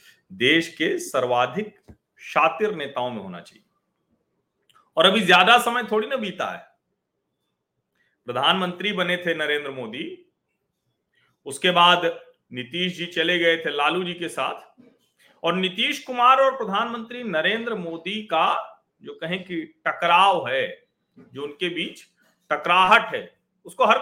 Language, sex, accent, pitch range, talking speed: Hindi, male, native, 150-205 Hz, 130 wpm